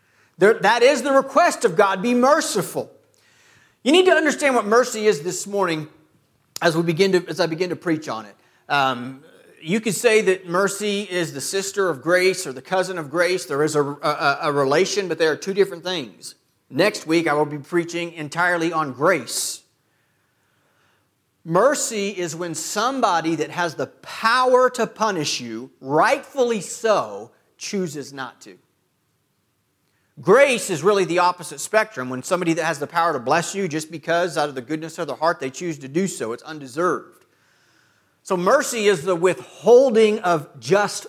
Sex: male